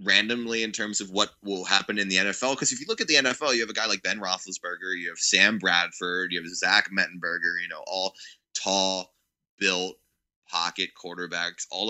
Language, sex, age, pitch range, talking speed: English, male, 20-39, 95-130 Hz, 200 wpm